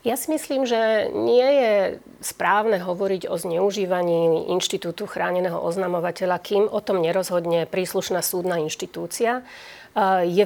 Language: Slovak